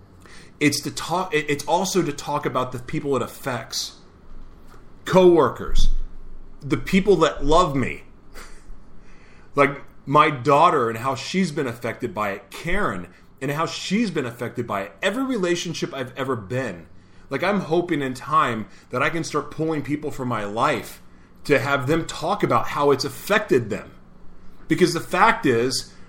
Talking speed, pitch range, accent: 155 wpm, 130-170 Hz, American